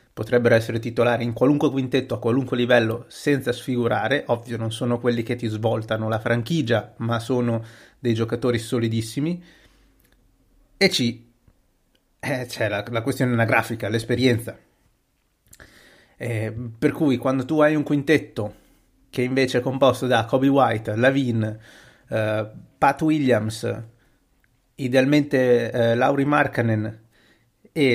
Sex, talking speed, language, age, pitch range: male, 125 wpm, Italian, 30-49, 115-140 Hz